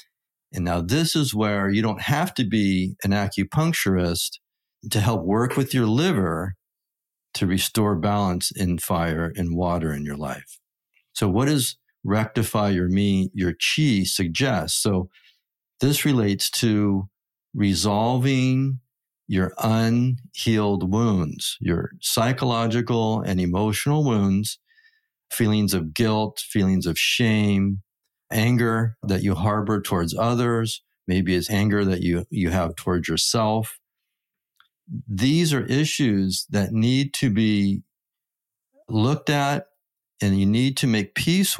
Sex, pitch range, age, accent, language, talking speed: male, 95-120 Hz, 50-69, American, English, 125 wpm